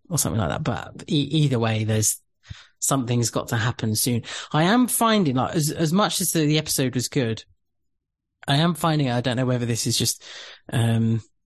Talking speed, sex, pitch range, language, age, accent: 200 wpm, male, 120-145 Hz, English, 30-49, British